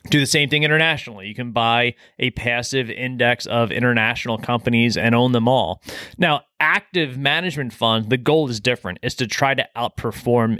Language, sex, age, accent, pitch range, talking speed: English, male, 20-39, American, 115-135 Hz, 175 wpm